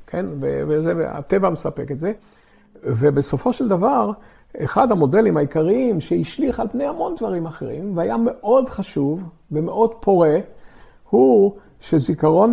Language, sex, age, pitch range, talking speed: Hebrew, male, 50-69, 135-195 Hz, 115 wpm